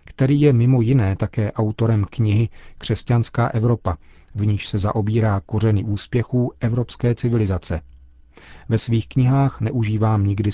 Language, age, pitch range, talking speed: Czech, 40-59, 100-120 Hz, 125 wpm